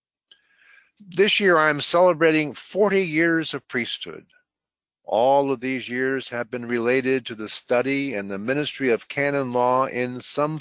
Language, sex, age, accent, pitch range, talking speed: English, male, 50-69, American, 115-155 Hz, 145 wpm